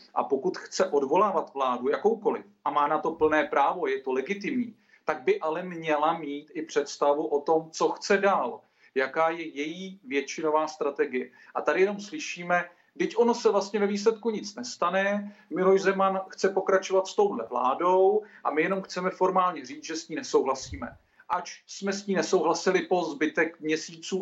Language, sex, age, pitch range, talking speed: Czech, male, 40-59, 155-200 Hz, 170 wpm